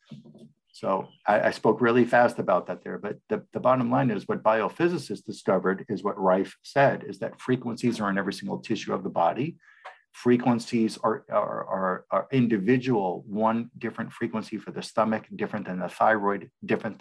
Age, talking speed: 50-69, 175 wpm